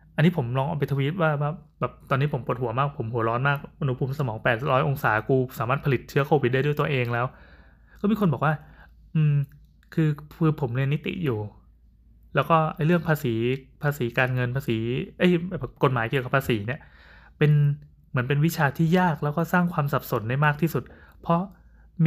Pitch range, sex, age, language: 125-155 Hz, male, 20-39, Thai